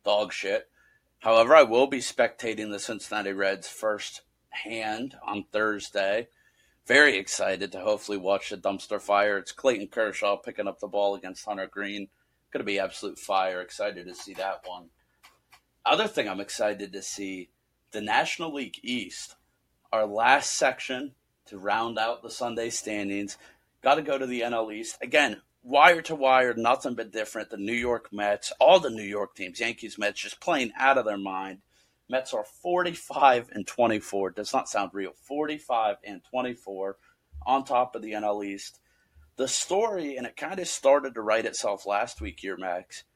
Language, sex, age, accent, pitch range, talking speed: English, male, 30-49, American, 100-120 Hz, 170 wpm